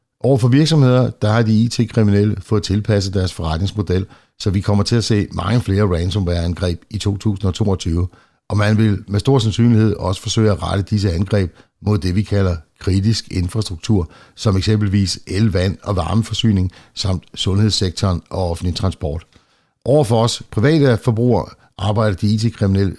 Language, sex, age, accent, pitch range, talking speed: Danish, male, 60-79, native, 95-115 Hz, 155 wpm